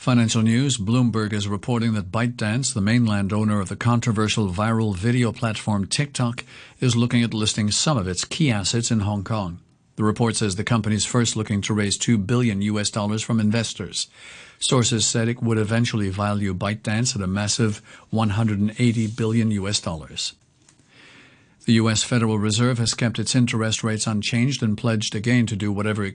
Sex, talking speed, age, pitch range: male, 175 wpm, 50-69, 105-120 Hz